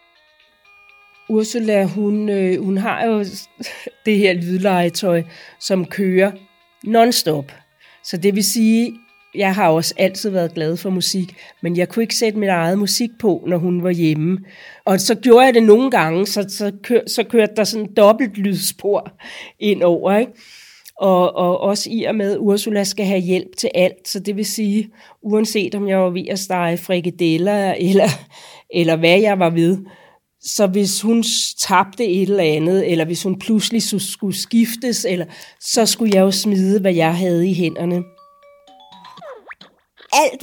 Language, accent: Danish, native